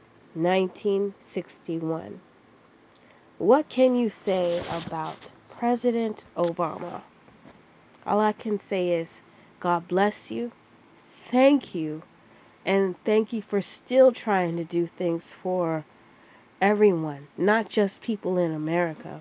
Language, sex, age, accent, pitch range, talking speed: English, female, 20-39, American, 165-195 Hz, 105 wpm